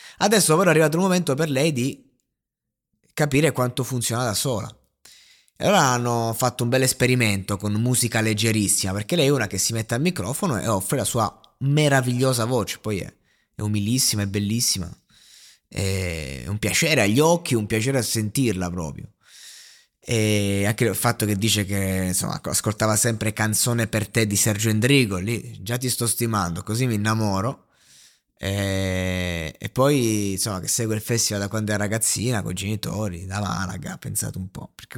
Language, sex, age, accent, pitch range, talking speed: Italian, male, 20-39, native, 100-125 Hz, 175 wpm